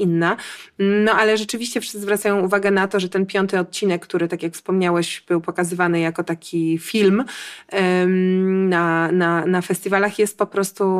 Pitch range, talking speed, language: 170-195 Hz, 165 wpm, Polish